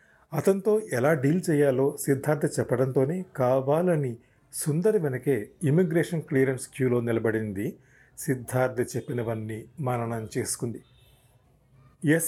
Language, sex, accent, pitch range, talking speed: Telugu, male, native, 120-150 Hz, 85 wpm